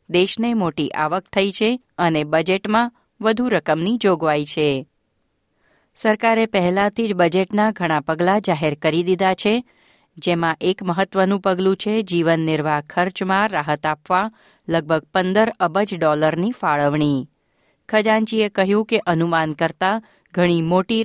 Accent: native